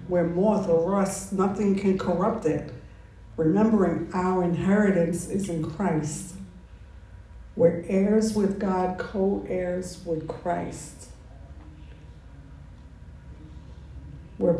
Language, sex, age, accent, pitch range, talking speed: English, female, 60-79, American, 145-190 Hz, 90 wpm